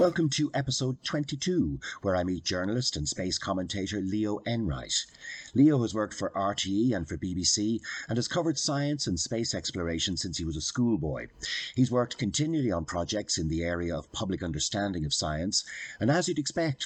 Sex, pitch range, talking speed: male, 90-135 Hz, 180 wpm